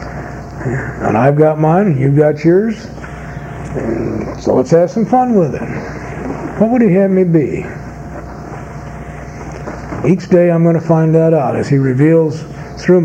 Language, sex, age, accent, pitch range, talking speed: English, male, 60-79, American, 140-175 Hz, 145 wpm